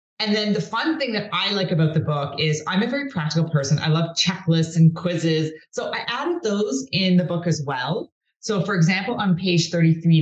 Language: English